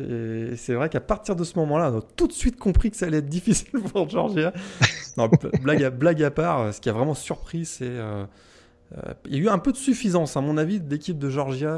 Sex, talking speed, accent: male, 260 wpm, French